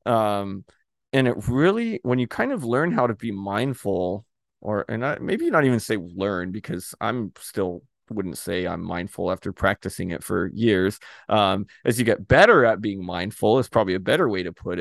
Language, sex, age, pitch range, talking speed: English, male, 30-49, 95-115 Hz, 195 wpm